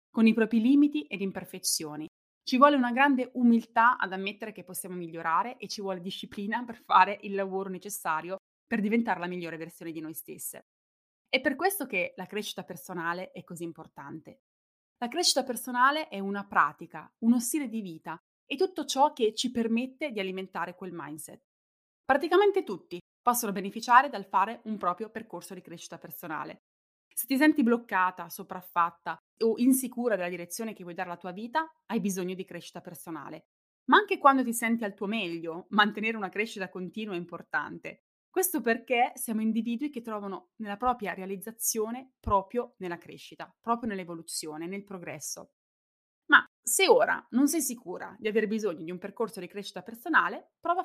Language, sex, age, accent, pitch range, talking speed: Italian, female, 20-39, native, 180-245 Hz, 165 wpm